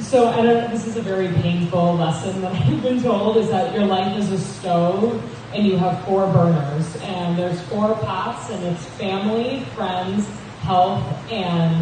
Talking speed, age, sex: 180 wpm, 20-39, female